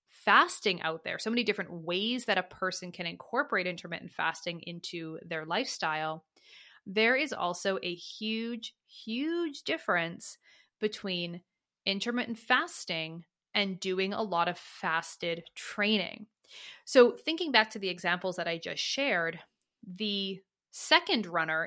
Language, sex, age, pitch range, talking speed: English, female, 20-39, 170-220 Hz, 130 wpm